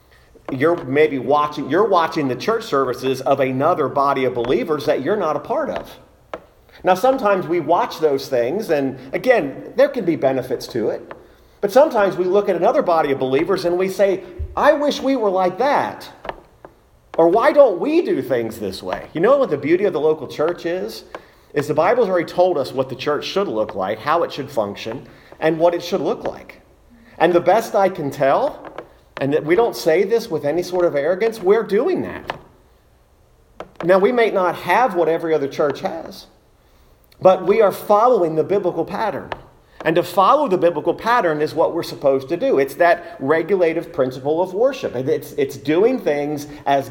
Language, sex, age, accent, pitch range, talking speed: English, male, 40-59, American, 145-200 Hz, 195 wpm